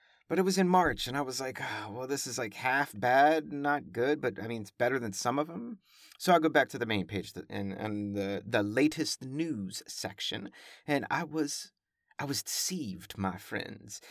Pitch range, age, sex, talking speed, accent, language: 125-185 Hz, 30-49, male, 215 wpm, American, English